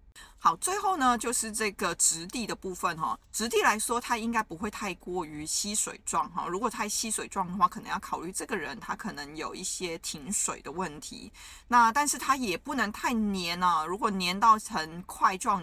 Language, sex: Chinese, female